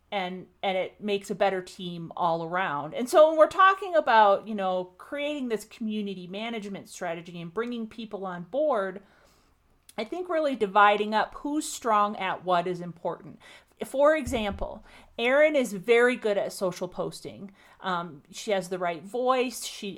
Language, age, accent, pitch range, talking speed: English, 40-59, American, 180-225 Hz, 160 wpm